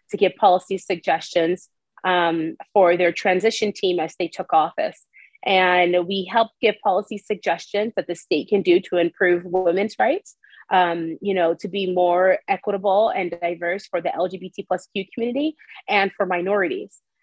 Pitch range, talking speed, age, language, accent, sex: 185-250 Hz, 160 wpm, 30-49, English, American, female